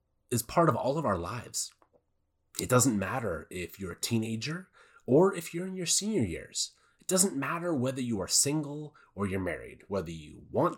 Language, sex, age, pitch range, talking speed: English, male, 30-49, 105-150 Hz, 190 wpm